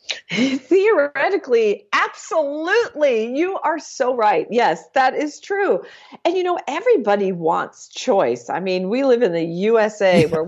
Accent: American